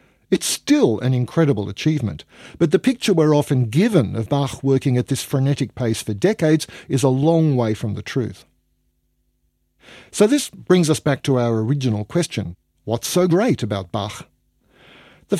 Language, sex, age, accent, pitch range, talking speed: English, male, 50-69, Australian, 120-170 Hz, 165 wpm